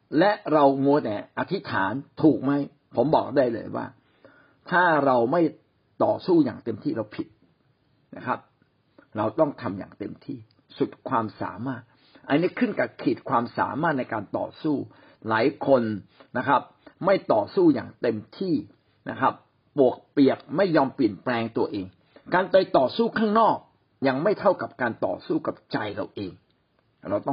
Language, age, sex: Thai, 60-79, male